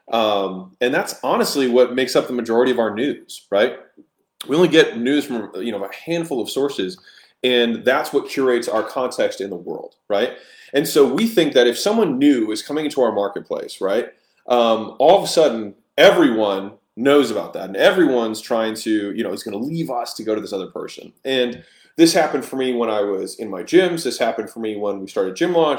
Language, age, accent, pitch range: English, 20-39, American, 115-155 Hz